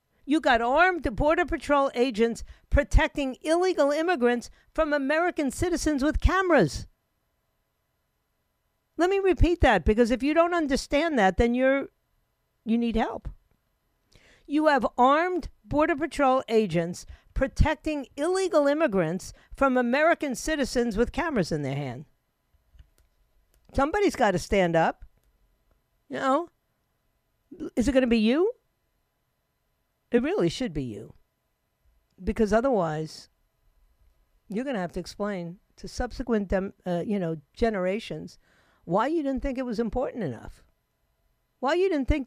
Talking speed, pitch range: 130 wpm, 190-300 Hz